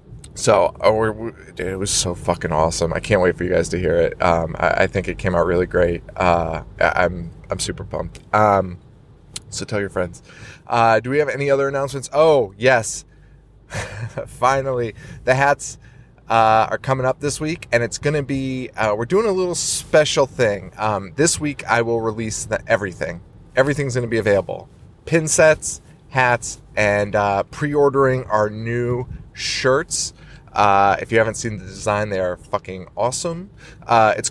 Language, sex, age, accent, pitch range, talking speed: English, male, 30-49, American, 100-130 Hz, 170 wpm